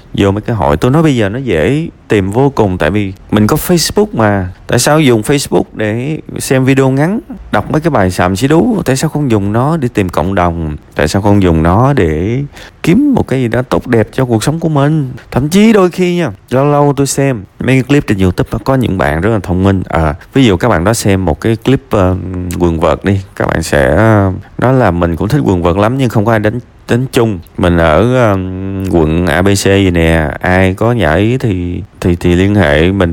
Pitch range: 90-130 Hz